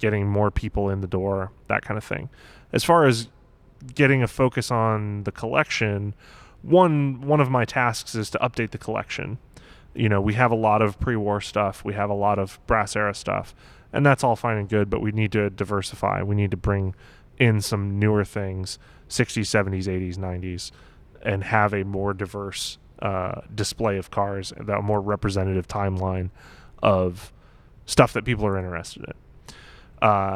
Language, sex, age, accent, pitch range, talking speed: English, male, 20-39, American, 100-120 Hz, 180 wpm